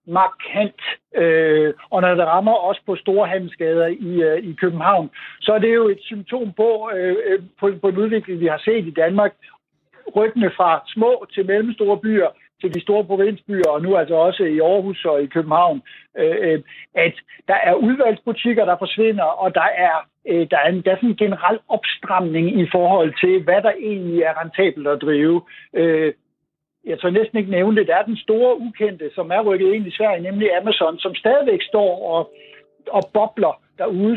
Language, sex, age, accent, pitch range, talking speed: Danish, male, 60-79, native, 175-220 Hz, 165 wpm